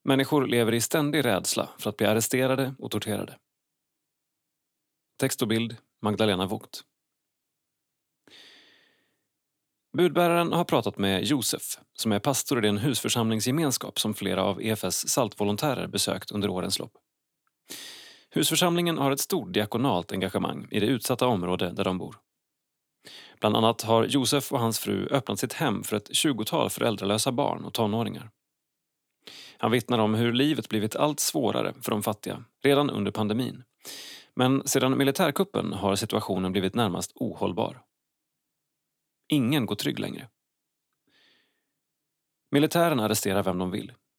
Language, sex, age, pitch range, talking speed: Swedish, male, 30-49, 105-150 Hz, 135 wpm